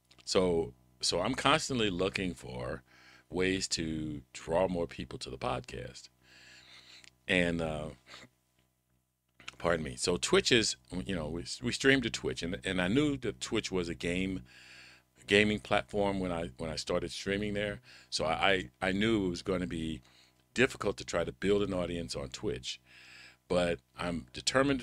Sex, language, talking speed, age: male, English, 160 wpm, 50-69